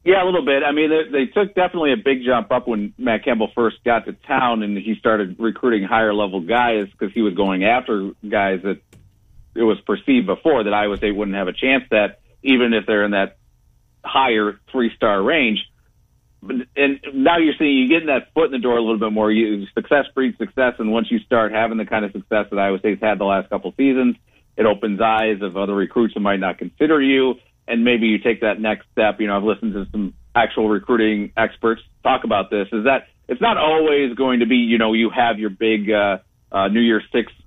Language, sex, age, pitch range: English, male, 50-69, 105-125 Hz